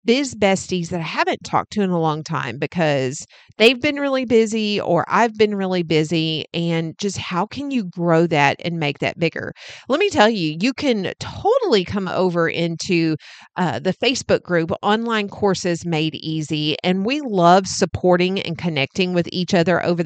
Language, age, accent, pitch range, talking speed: English, 40-59, American, 170-225 Hz, 180 wpm